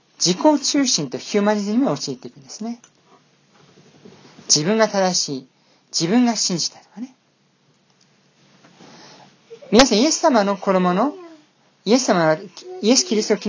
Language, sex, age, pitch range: Japanese, male, 40-59, 165-265 Hz